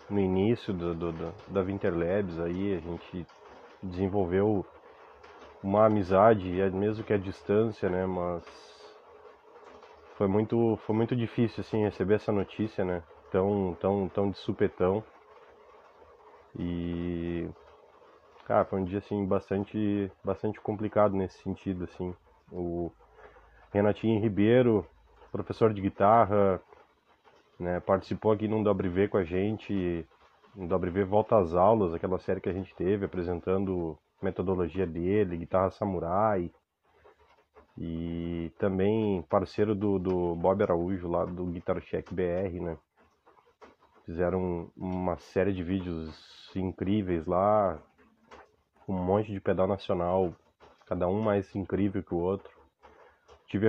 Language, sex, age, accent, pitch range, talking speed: Portuguese, male, 20-39, Brazilian, 90-105 Hz, 120 wpm